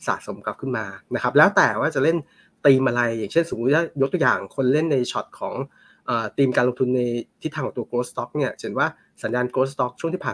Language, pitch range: Thai, 120-145 Hz